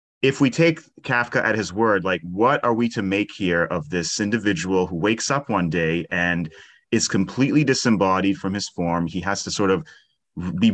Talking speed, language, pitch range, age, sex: 195 wpm, English, 95-120 Hz, 30-49, male